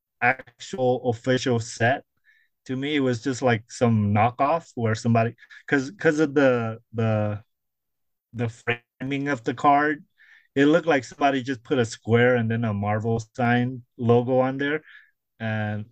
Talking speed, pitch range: 150 wpm, 110-130 Hz